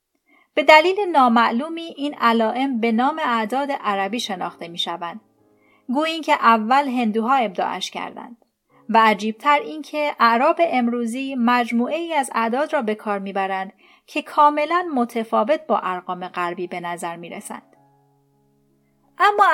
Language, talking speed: Persian, 130 wpm